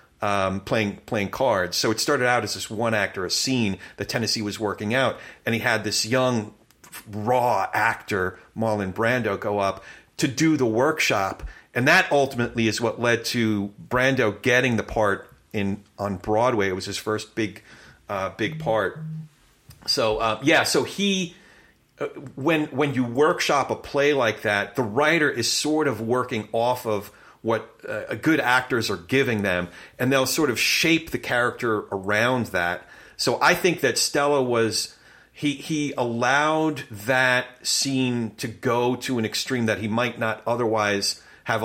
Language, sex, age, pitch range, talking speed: English, male, 40-59, 105-130 Hz, 165 wpm